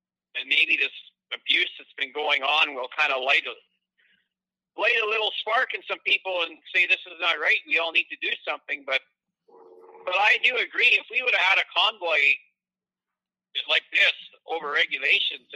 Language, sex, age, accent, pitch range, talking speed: English, male, 50-69, American, 160-215 Hz, 180 wpm